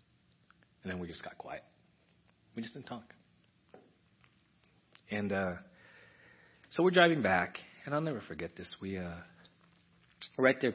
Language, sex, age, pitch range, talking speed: English, male, 40-59, 95-130 Hz, 140 wpm